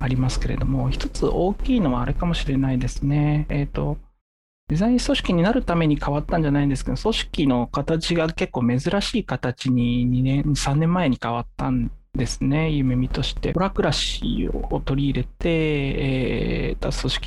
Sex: male